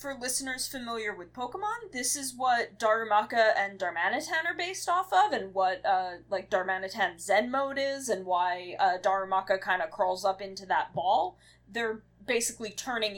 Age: 20-39